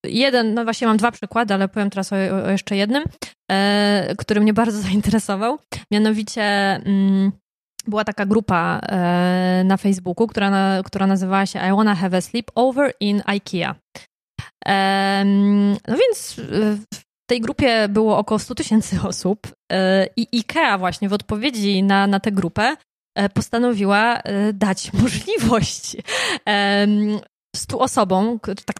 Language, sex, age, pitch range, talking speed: Polish, female, 20-39, 190-225 Hz, 145 wpm